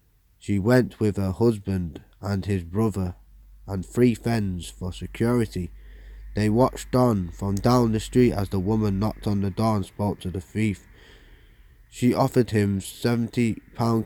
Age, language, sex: 20-39, English, male